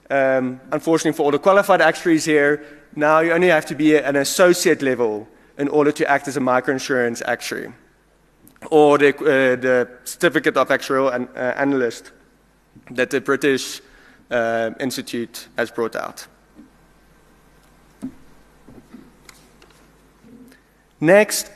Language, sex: English, male